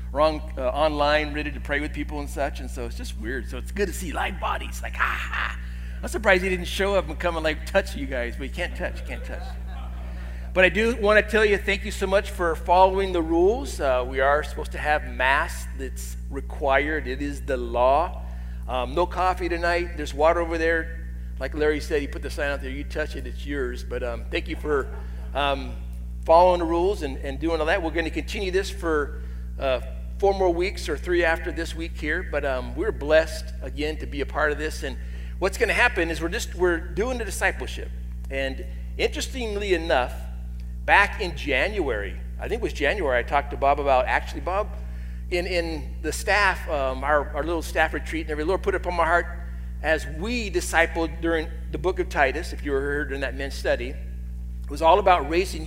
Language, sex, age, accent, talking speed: English, male, 40-59, American, 220 wpm